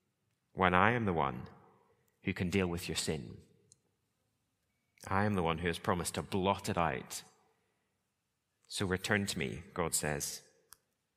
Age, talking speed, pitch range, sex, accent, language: 30-49, 150 wpm, 90-110 Hz, male, British, English